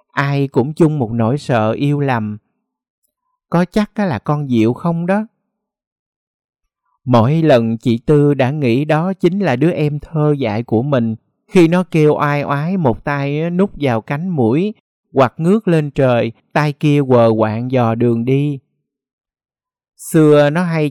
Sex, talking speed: male, 160 wpm